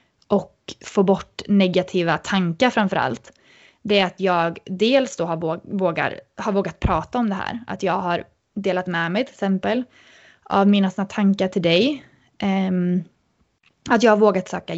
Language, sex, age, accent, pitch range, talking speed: Swedish, female, 20-39, native, 185-210 Hz, 160 wpm